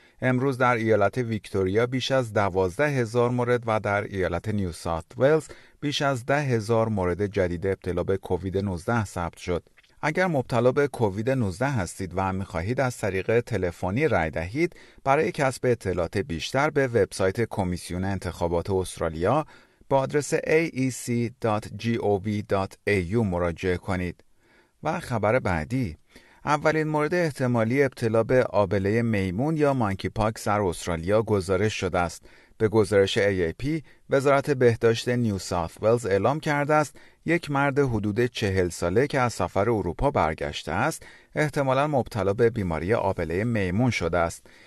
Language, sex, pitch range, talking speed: Persian, male, 95-130 Hz, 135 wpm